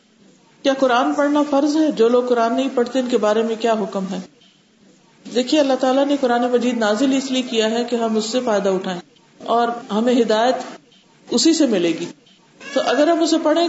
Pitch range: 230-275 Hz